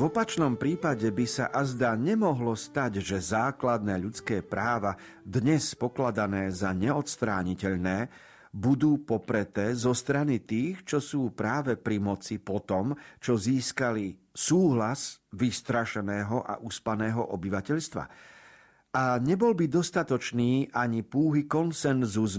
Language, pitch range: Slovak, 100-135 Hz